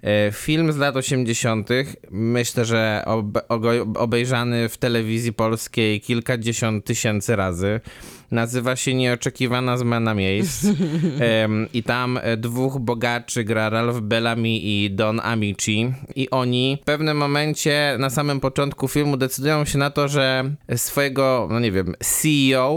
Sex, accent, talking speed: male, native, 125 wpm